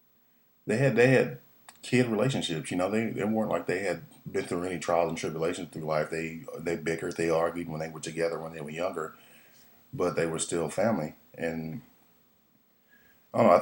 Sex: male